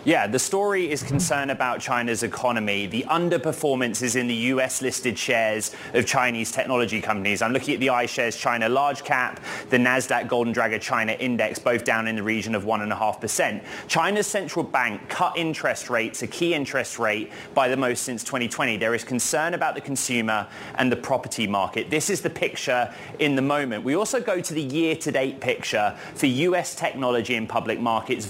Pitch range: 120-165 Hz